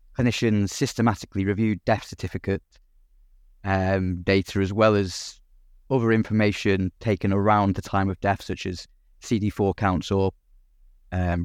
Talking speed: 125 wpm